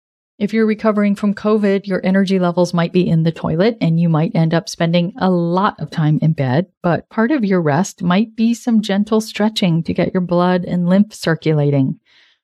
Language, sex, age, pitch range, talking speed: English, female, 40-59, 170-220 Hz, 205 wpm